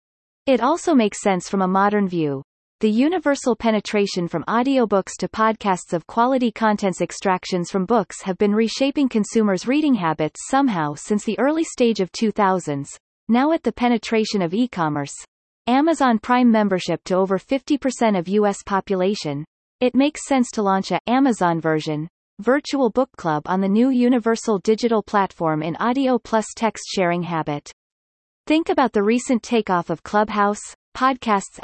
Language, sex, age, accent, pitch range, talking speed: English, female, 30-49, American, 185-245 Hz, 150 wpm